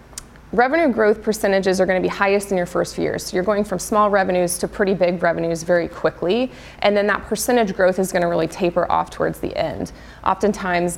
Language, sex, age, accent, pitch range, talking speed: English, female, 20-39, American, 170-205 Hz, 210 wpm